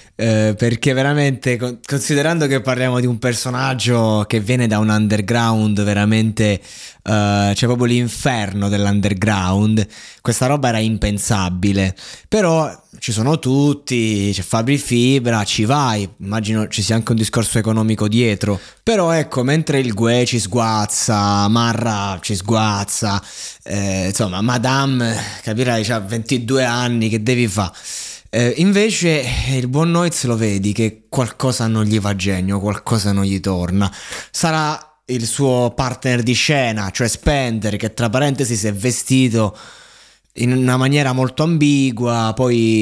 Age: 20-39